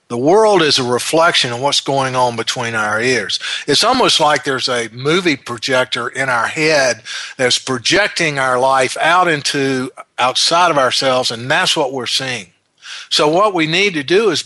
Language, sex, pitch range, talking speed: English, male, 125-150 Hz, 180 wpm